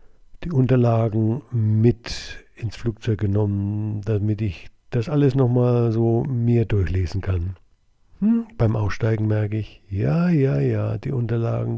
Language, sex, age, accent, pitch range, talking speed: German, male, 50-69, German, 105-140 Hz, 130 wpm